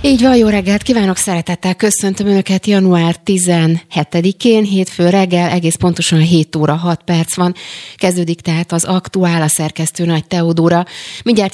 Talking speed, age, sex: 145 wpm, 30-49, female